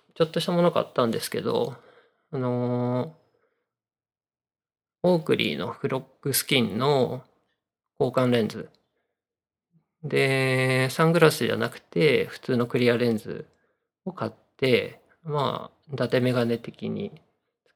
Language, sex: Japanese, male